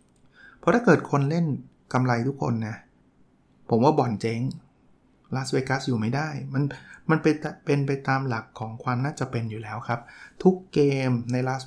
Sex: male